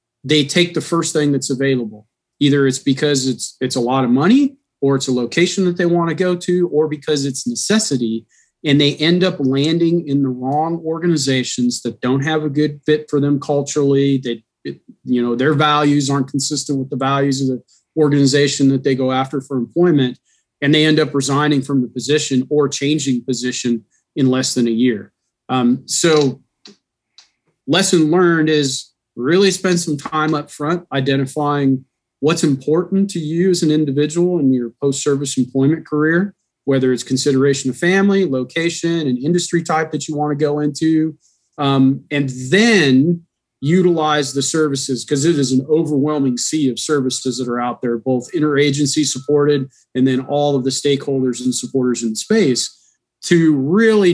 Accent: American